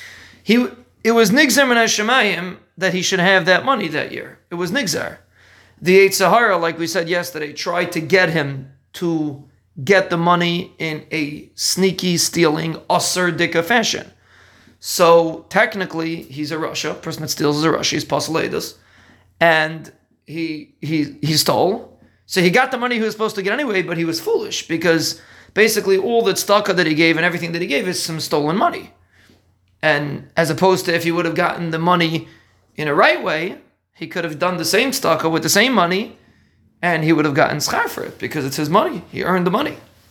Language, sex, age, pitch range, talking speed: English, male, 30-49, 155-185 Hz, 195 wpm